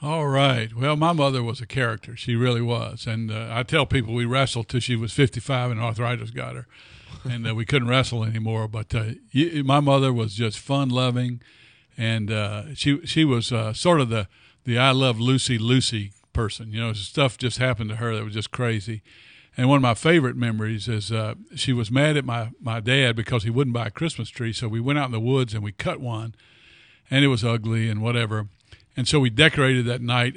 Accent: American